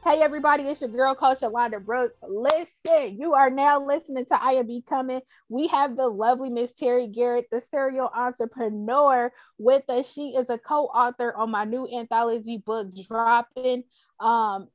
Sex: female